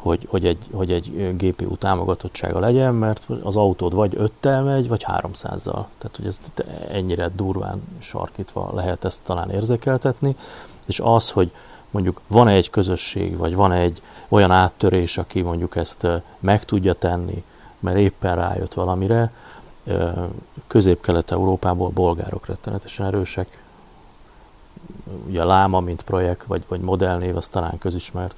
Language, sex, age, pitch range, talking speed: Hungarian, male, 30-49, 90-105 Hz, 130 wpm